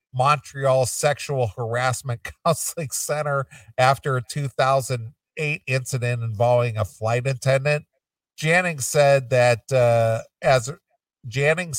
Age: 50-69